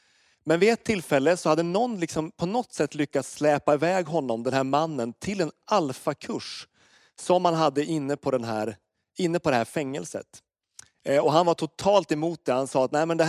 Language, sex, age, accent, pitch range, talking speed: Swedish, male, 30-49, native, 135-175 Hz, 205 wpm